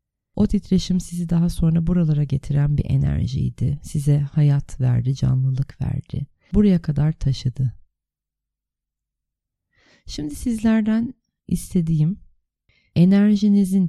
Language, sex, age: Turkish, female, 30-49